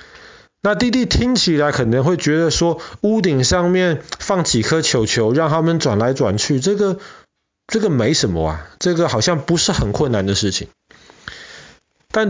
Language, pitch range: Chinese, 115-165 Hz